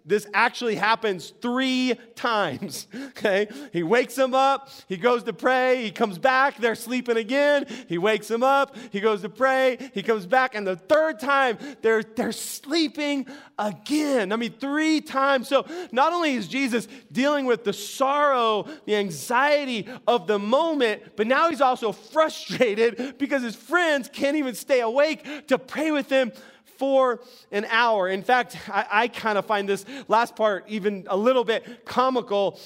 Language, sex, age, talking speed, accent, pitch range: English, male, 30-49, 165 wpm, American, 220-275 Hz